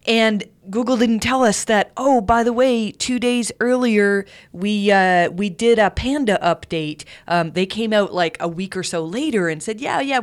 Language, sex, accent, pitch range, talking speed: English, female, American, 170-225 Hz, 200 wpm